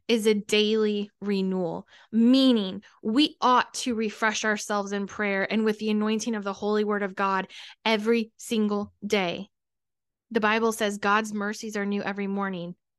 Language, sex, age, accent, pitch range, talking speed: English, female, 10-29, American, 200-240 Hz, 155 wpm